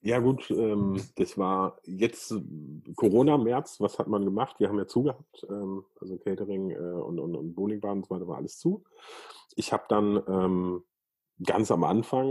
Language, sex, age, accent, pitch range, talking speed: German, male, 30-49, German, 95-115 Hz, 180 wpm